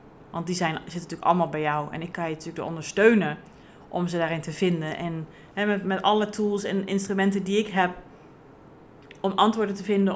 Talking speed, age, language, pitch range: 190 wpm, 30-49, Dutch, 175-220 Hz